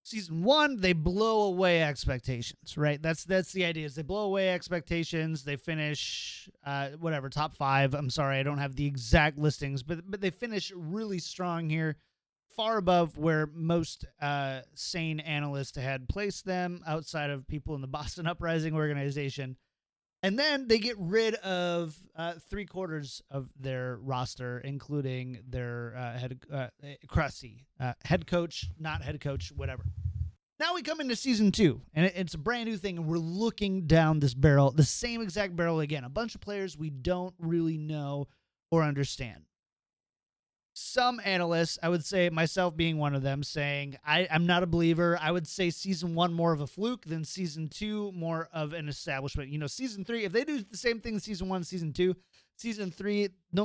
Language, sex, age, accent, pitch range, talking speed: English, male, 30-49, American, 145-185 Hz, 180 wpm